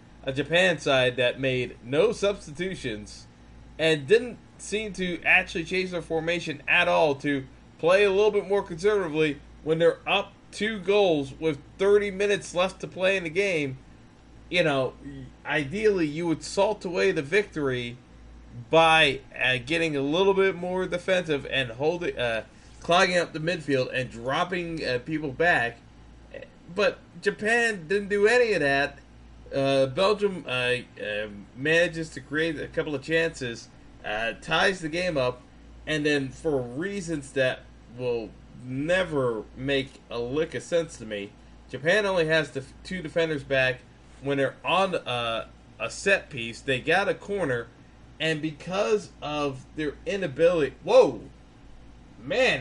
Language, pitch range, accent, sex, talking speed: English, 130-180 Hz, American, male, 145 wpm